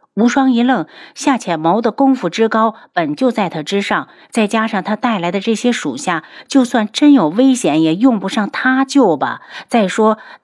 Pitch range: 180-255 Hz